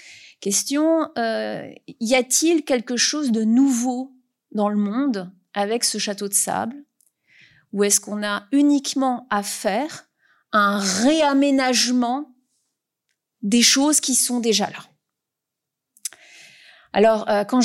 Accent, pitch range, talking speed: French, 215-280 Hz, 115 wpm